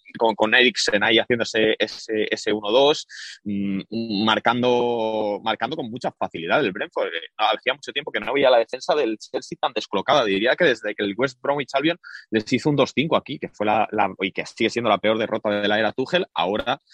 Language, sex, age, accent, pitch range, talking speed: Spanish, male, 20-39, Spanish, 105-125 Hz, 200 wpm